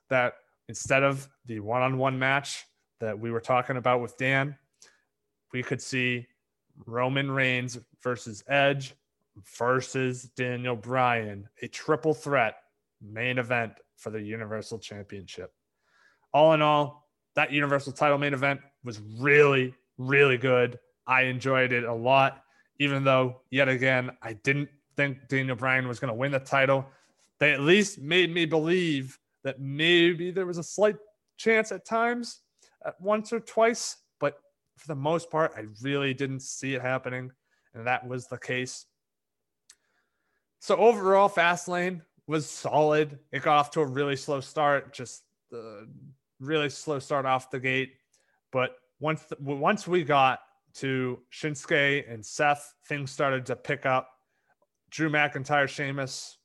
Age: 20-39